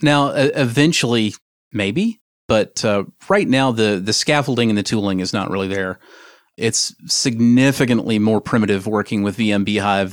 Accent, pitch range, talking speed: American, 105-130 Hz, 150 wpm